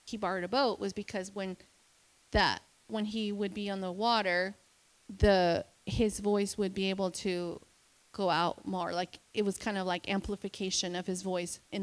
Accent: American